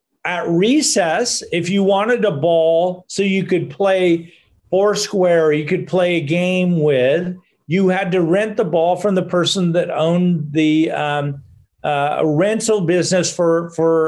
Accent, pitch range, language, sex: American, 155-195 Hz, English, male